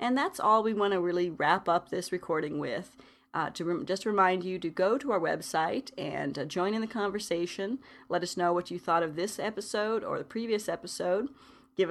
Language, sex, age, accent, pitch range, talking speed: English, female, 30-49, American, 175-215 Hz, 205 wpm